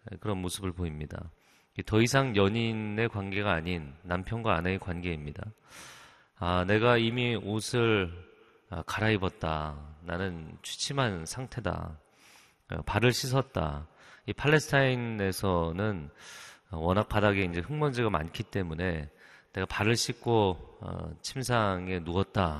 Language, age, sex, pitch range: Korean, 30-49, male, 85-115 Hz